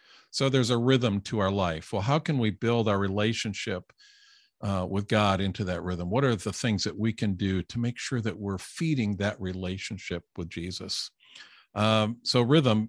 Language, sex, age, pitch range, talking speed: English, male, 50-69, 100-130 Hz, 190 wpm